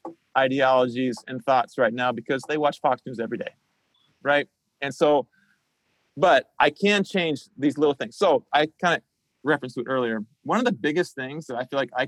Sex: male